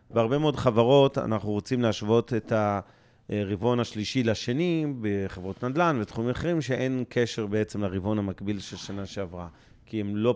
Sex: male